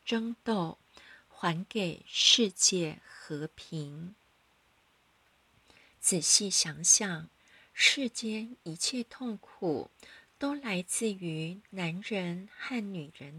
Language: Chinese